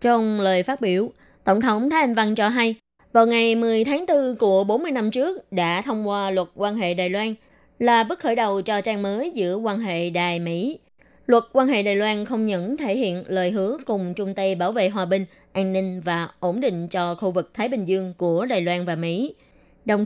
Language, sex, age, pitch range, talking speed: Vietnamese, female, 20-39, 185-230 Hz, 220 wpm